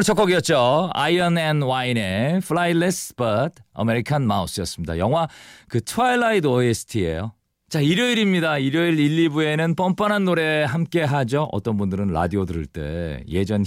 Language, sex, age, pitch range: Korean, male, 40-59, 100-160 Hz